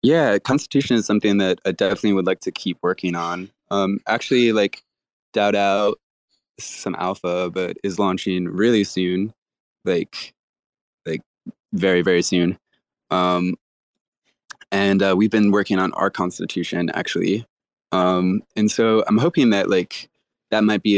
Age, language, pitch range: 20-39, English, 90-105 Hz